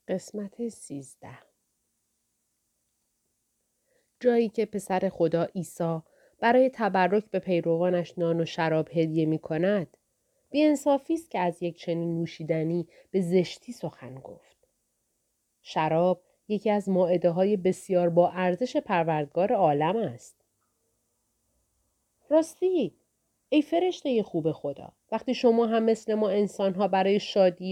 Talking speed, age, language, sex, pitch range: 115 wpm, 30-49, Persian, female, 170-225 Hz